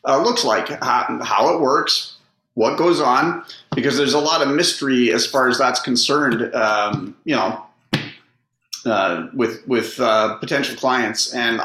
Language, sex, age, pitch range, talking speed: English, male, 40-59, 120-135 Hz, 160 wpm